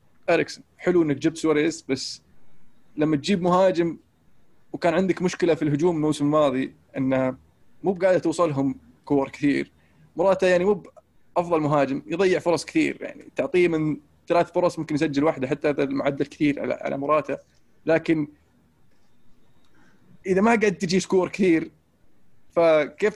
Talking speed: 135 wpm